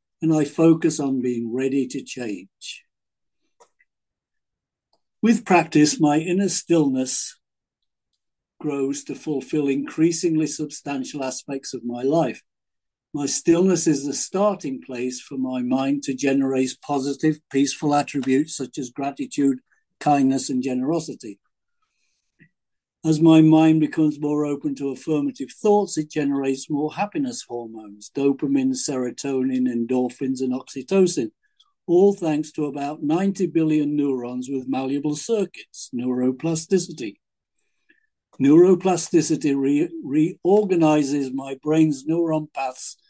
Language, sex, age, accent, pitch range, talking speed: English, male, 60-79, British, 135-175 Hz, 110 wpm